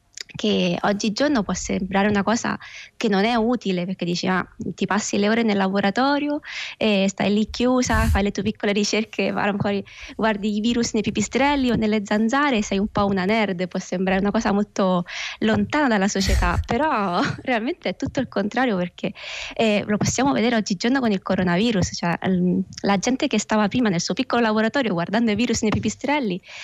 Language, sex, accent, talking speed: Italian, female, native, 180 wpm